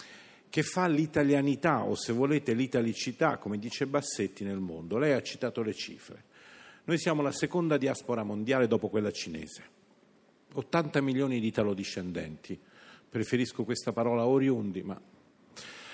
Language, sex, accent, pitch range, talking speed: Italian, male, native, 120-170 Hz, 130 wpm